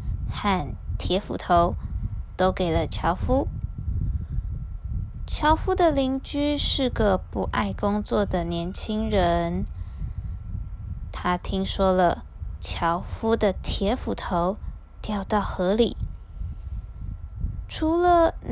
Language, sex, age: Chinese, female, 20-39